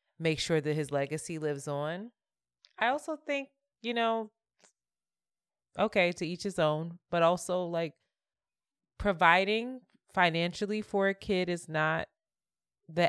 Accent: American